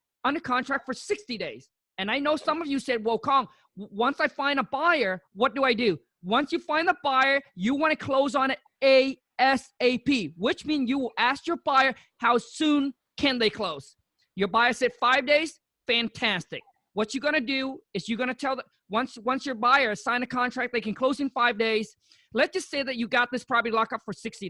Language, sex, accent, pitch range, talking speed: English, male, American, 230-280 Hz, 220 wpm